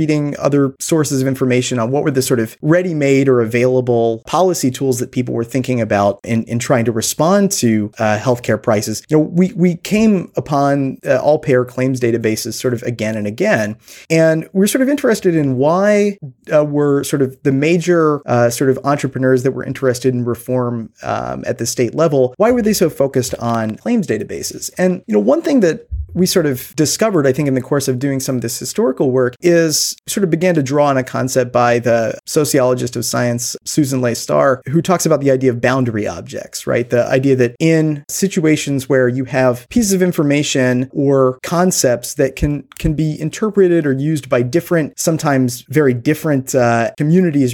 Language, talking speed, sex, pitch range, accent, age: English, 195 wpm, male, 125-160 Hz, American, 30-49